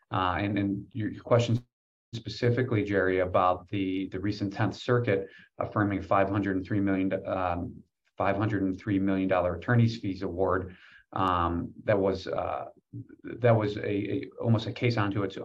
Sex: male